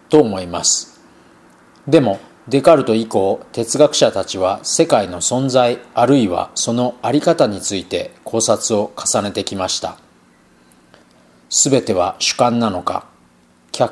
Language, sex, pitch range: Japanese, male, 85-130 Hz